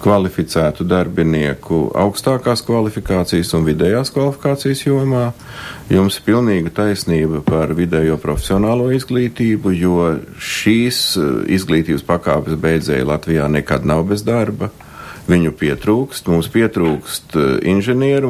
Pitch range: 80-115 Hz